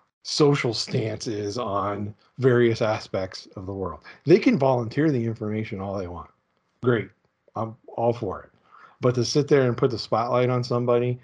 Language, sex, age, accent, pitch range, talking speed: English, male, 40-59, American, 100-125 Hz, 165 wpm